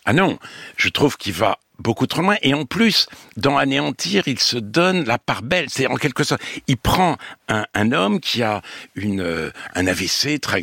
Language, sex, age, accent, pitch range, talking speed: French, male, 60-79, French, 115-155 Hz, 200 wpm